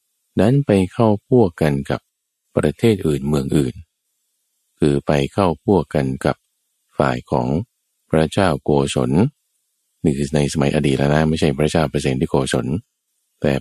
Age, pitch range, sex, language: 20-39, 70-90 Hz, male, Thai